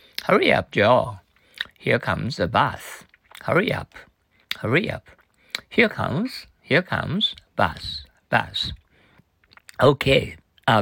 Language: Japanese